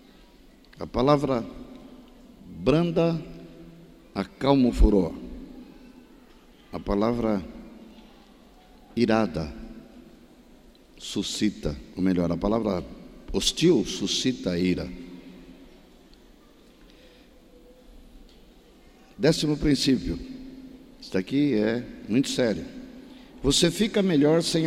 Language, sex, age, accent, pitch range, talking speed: Portuguese, male, 60-79, Brazilian, 120-175 Hz, 70 wpm